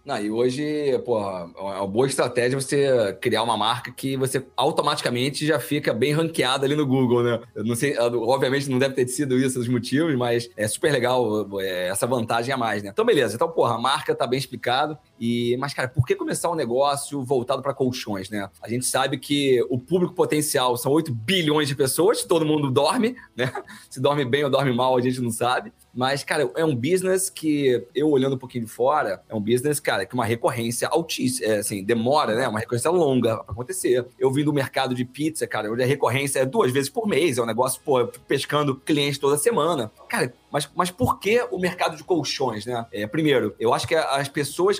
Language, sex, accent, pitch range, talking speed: Portuguese, male, Brazilian, 120-150 Hz, 215 wpm